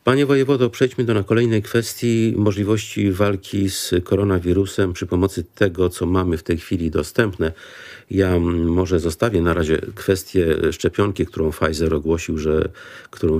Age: 50-69